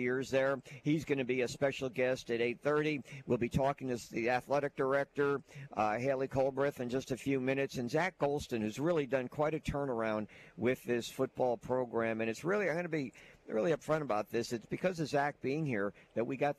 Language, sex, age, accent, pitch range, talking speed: English, male, 50-69, American, 125-145 Hz, 215 wpm